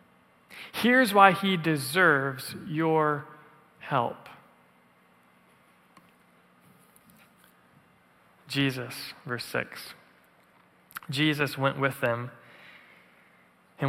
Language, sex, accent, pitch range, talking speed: English, male, American, 125-155 Hz, 60 wpm